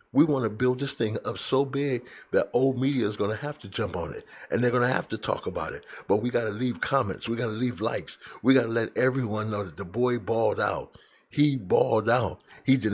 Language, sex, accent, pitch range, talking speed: English, male, American, 105-125 Hz, 260 wpm